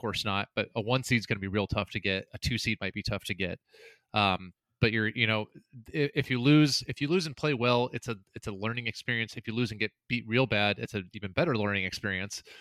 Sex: male